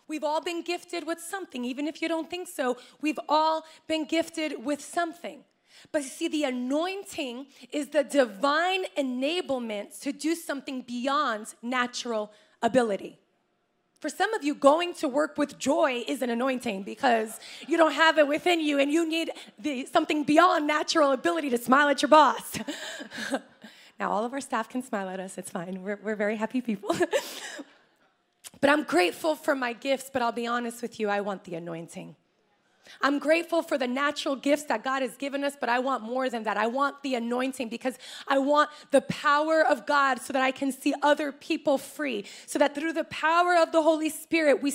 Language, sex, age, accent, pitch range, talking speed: English, female, 20-39, American, 260-330 Hz, 190 wpm